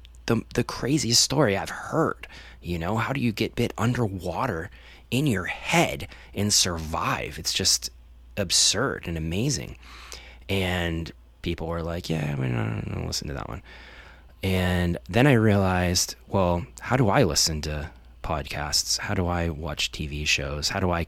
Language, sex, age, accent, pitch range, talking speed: English, male, 20-39, American, 80-100 Hz, 155 wpm